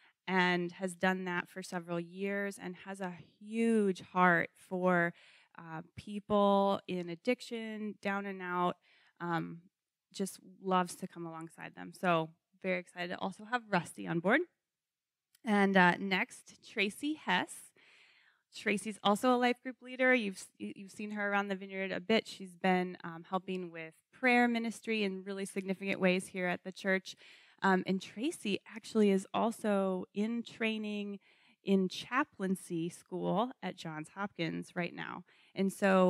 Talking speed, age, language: 150 wpm, 20-39, English